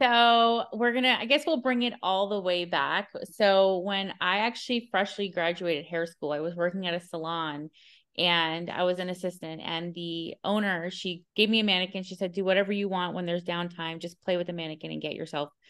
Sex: female